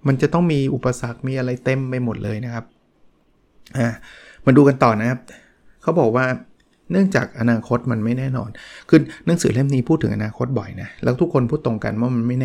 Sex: male